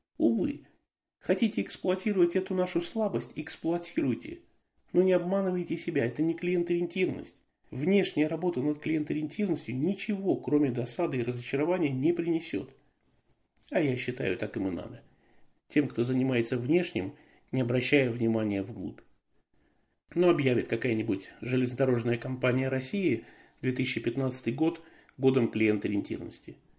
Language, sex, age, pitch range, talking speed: Russian, male, 40-59, 125-175 Hz, 110 wpm